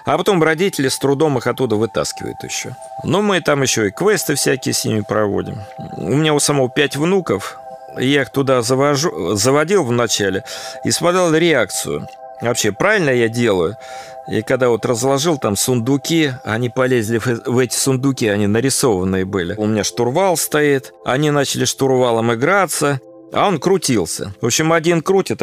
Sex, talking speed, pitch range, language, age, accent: male, 155 wpm, 110-145 Hz, Russian, 40-59, native